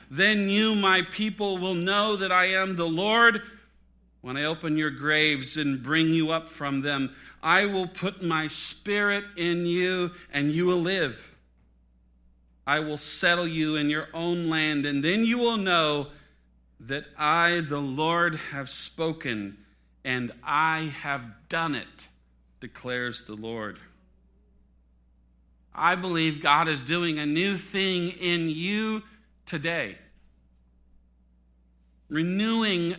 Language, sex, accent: English, male, American